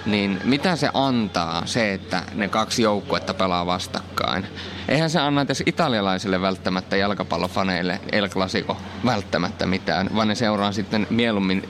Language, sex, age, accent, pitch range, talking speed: Finnish, male, 20-39, native, 95-125 Hz, 140 wpm